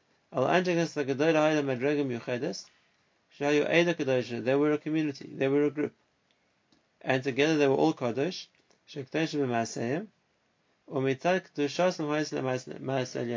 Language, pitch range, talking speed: English, 130-160 Hz, 65 wpm